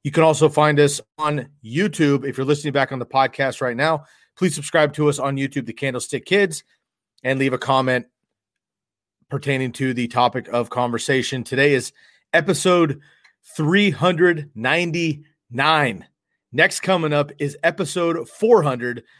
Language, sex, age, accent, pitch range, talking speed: English, male, 30-49, American, 125-155 Hz, 140 wpm